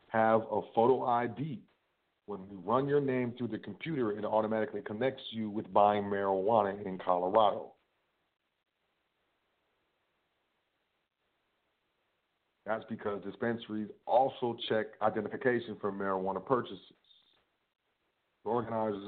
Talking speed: 100 wpm